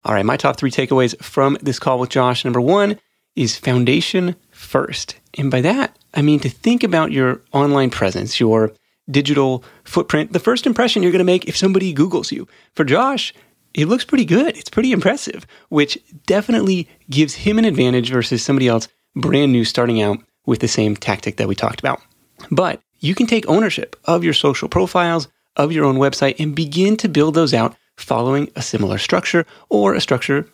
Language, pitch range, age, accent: English, 120-165 Hz, 30-49, American